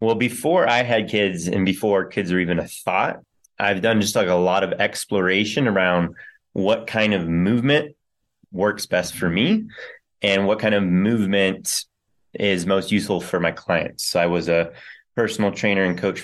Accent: American